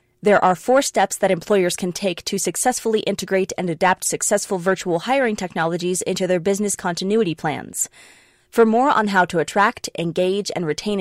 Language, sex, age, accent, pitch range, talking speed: English, female, 20-39, American, 180-220 Hz, 170 wpm